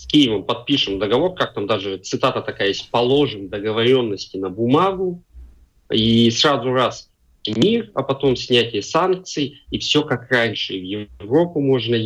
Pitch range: 105-135 Hz